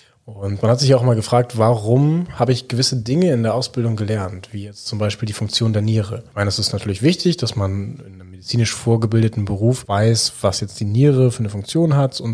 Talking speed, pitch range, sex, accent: 230 wpm, 100-120 Hz, male, German